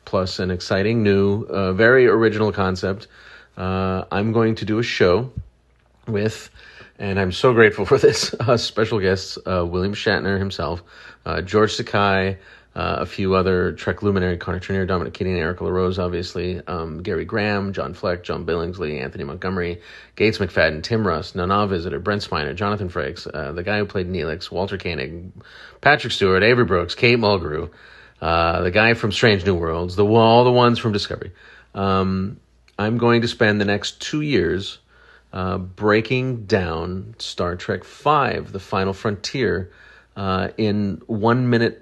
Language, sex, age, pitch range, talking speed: English, male, 40-59, 90-110 Hz, 160 wpm